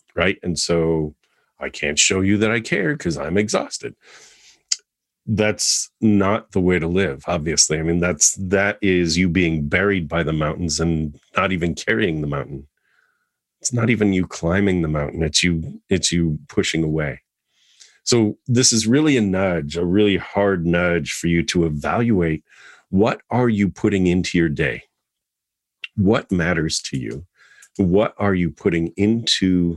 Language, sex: English, male